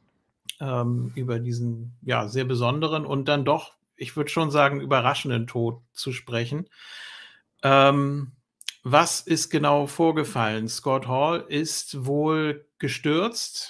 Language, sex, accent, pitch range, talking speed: German, male, German, 120-145 Hz, 120 wpm